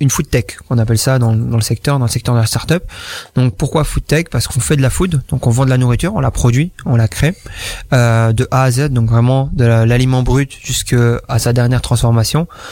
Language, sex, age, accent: French, male, 20-39, French